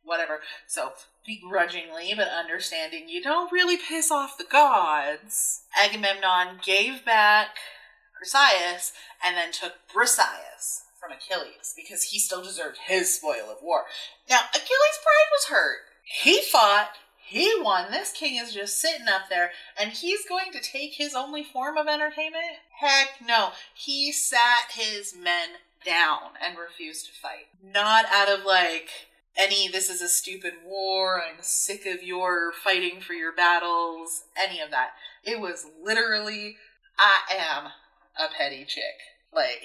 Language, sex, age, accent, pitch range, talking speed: English, female, 30-49, American, 175-270 Hz, 145 wpm